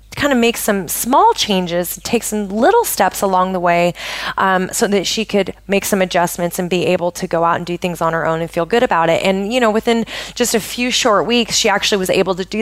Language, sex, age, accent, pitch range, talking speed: English, female, 20-39, American, 185-240 Hz, 250 wpm